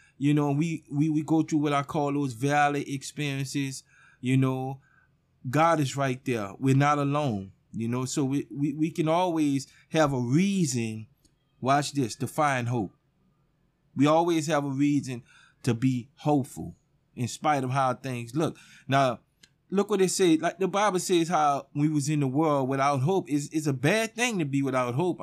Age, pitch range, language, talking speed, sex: 20-39, 140-180 Hz, English, 185 wpm, male